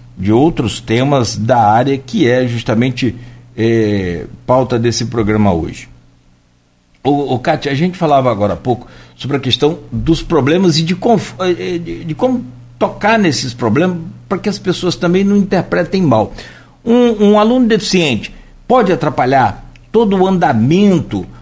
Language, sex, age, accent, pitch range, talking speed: Portuguese, male, 60-79, Brazilian, 115-165 Hz, 150 wpm